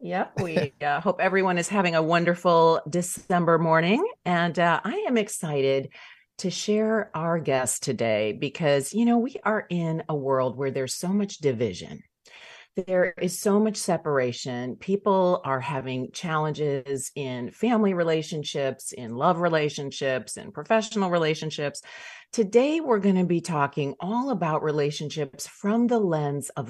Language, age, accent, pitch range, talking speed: English, 40-59, American, 135-185 Hz, 150 wpm